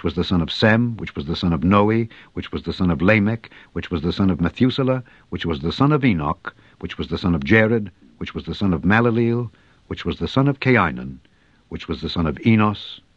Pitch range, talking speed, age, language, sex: 90-120 Hz, 240 wpm, 60-79, English, male